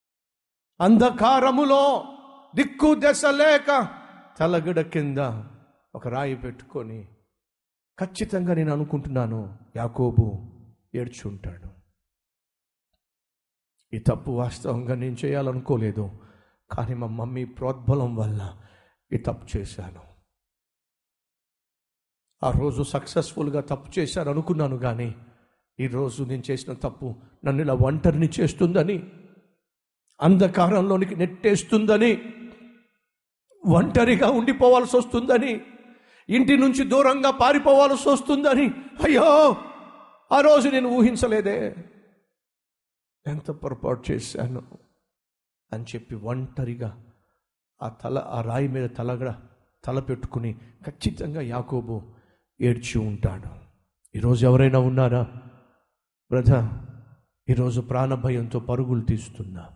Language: Telugu